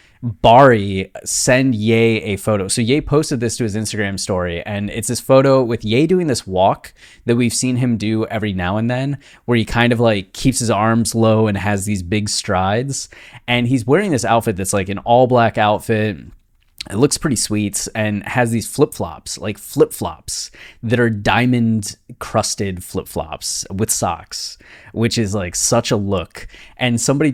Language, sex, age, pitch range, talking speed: English, male, 20-39, 105-125 Hz, 180 wpm